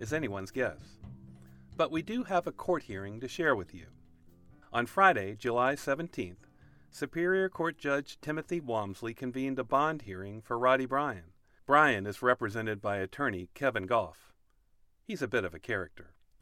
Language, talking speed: English, 155 wpm